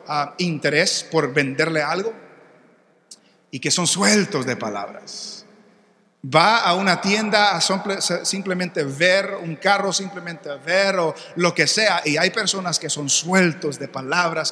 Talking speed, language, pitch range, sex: 140 wpm, English, 150-190 Hz, male